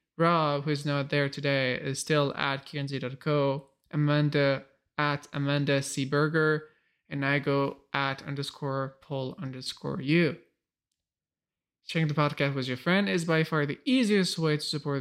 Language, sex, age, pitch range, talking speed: English, male, 20-39, 135-155 Hz, 150 wpm